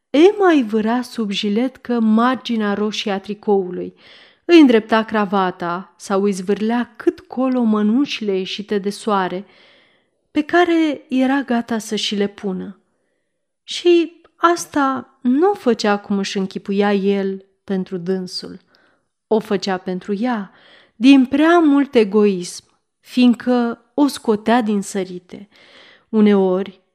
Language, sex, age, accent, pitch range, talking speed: Romanian, female, 30-49, native, 200-255 Hz, 120 wpm